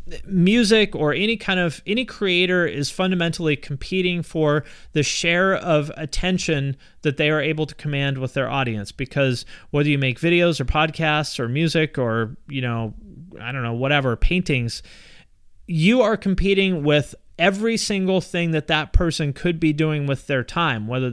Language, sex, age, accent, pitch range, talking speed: English, male, 30-49, American, 140-180 Hz, 165 wpm